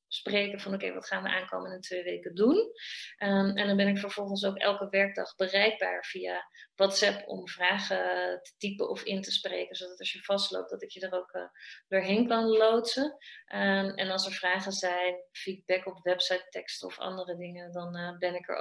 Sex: female